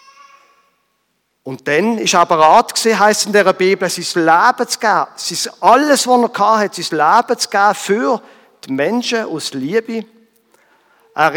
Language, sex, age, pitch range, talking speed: German, male, 50-69, 165-225 Hz, 155 wpm